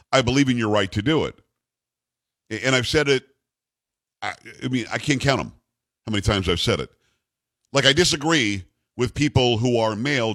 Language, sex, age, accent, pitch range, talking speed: English, male, 50-69, American, 115-150 Hz, 185 wpm